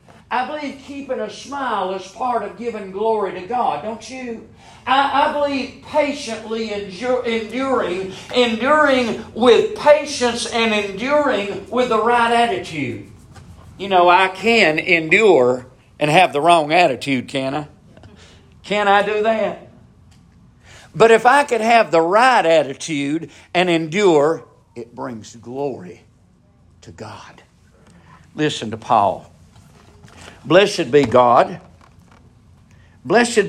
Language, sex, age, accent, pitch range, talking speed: English, male, 50-69, American, 140-220 Hz, 120 wpm